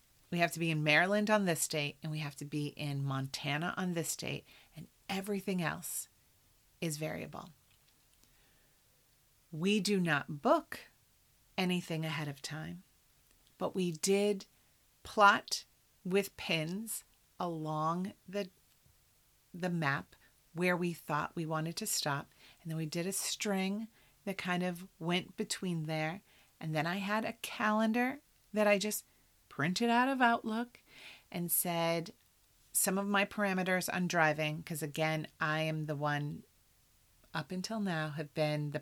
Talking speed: 145 wpm